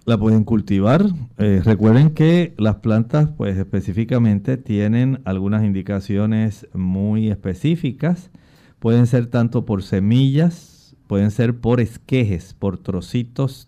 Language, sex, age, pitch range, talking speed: Spanish, male, 50-69, 100-130 Hz, 115 wpm